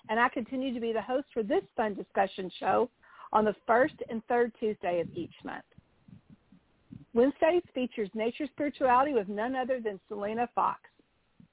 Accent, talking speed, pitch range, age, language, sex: American, 160 wpm, 215-270 Hz, 50-69, English, female